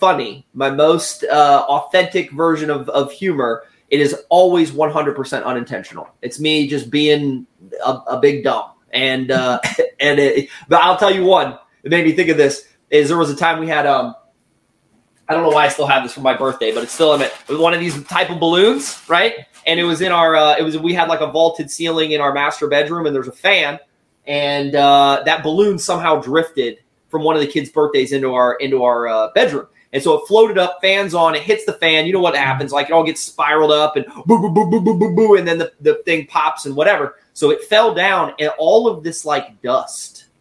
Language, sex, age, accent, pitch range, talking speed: English, male, 20-39, American, 140-175 Hz, 235 wpm